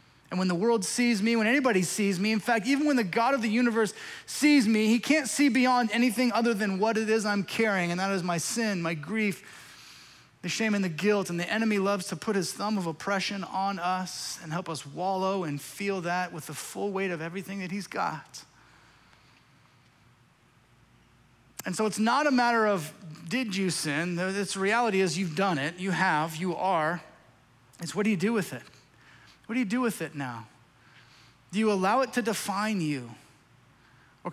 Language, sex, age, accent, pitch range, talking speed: English, male, 30-49, American, 155-205 Hz, 200 wpm